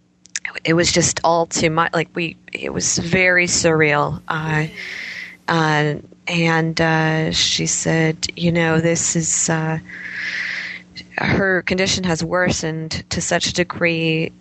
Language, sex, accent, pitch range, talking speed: English, female, American, 160-175 Hz, 130 wpm